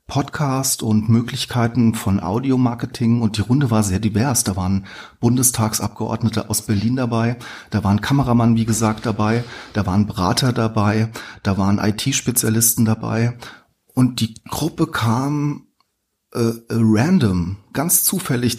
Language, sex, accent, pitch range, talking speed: German, male, German, 110-125 Hz, 130 wpm